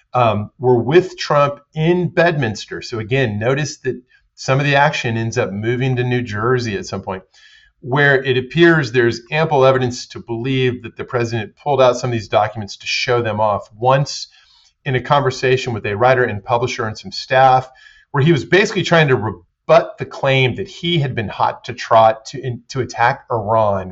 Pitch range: 115-145 Hz